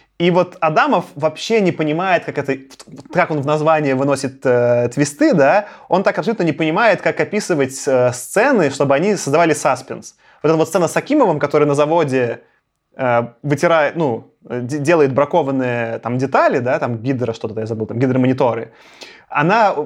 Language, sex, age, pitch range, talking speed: Russian, male, 20-39, 140-180 Hz, 155 wpm